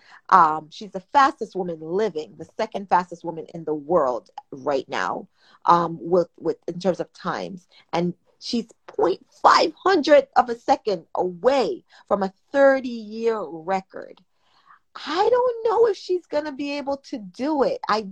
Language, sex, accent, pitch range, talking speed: English, female, American, 180-260 Hz, 155 wpm